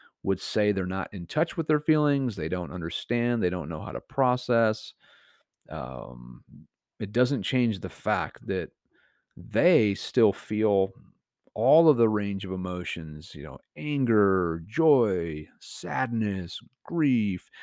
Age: 40-59